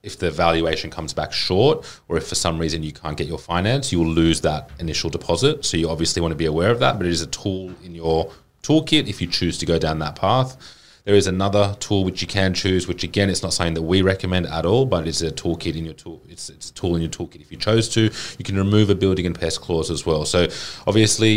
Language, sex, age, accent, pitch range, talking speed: English, male, 30-49, Australian, 80-95 Hz, 265 wpm